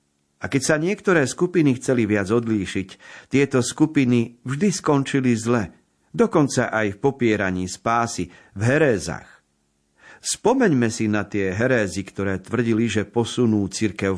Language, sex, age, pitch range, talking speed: Slovak, male, 50-69, 100-135 Hz, 125 wpm